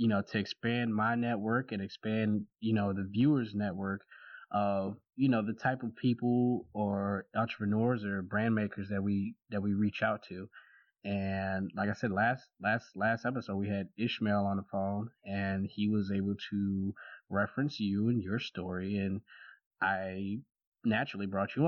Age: 20-39